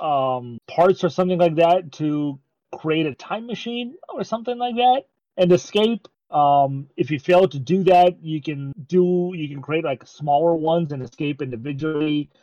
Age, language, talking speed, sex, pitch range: 30-49, English, 175 wpm, male, 135-175 Hz